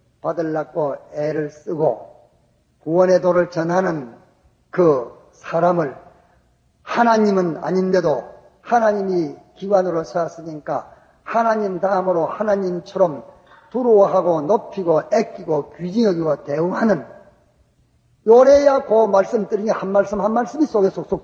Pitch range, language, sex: 170-220 Hz, English, male